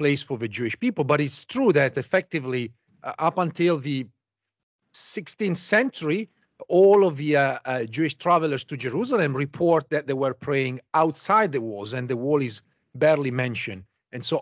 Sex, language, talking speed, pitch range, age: male, English, 170 wpm, 130-170 Hz, 40-59